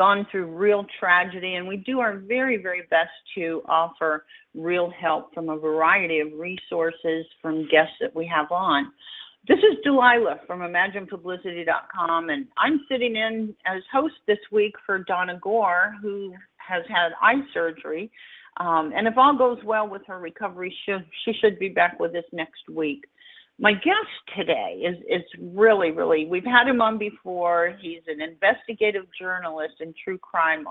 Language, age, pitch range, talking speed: English, 50-69, 165-220 Hz, 165 wpm